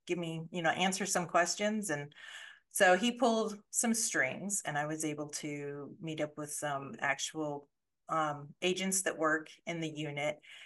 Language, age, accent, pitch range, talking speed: English, 40-59, American, 155-220 Hz, 170 wpm